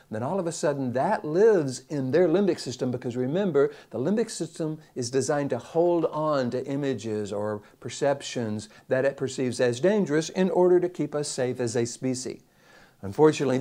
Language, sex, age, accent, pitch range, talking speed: English, male, 60-79, American, 115-150 Hz, 175 wpm